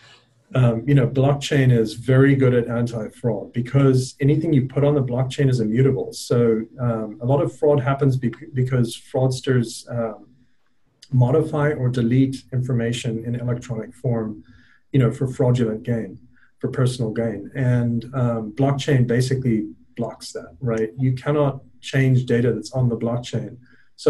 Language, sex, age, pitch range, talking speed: English, male, 40-59, 115-135 Hz, 145 wpm